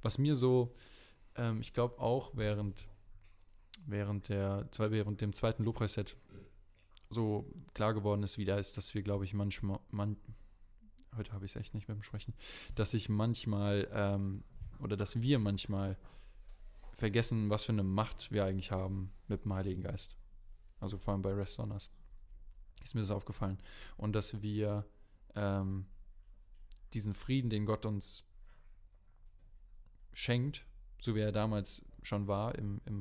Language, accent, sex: German, German, male